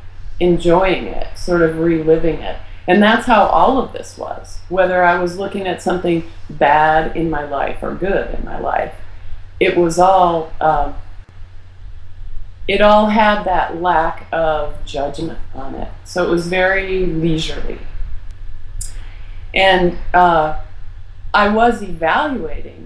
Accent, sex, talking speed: American, female, 135 wpm